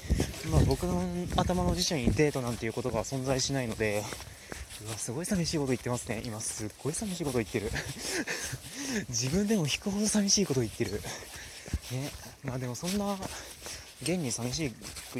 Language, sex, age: Japanese, male, 20-39